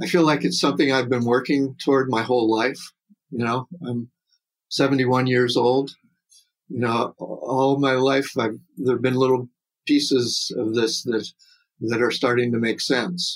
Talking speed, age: 165 wpm, 50-69